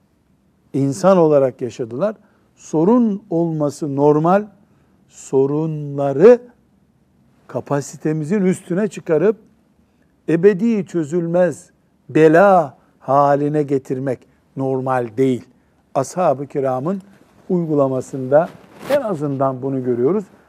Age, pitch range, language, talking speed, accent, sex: 60-79, 135-190 Hz, Turkish, 65 wpm, native, male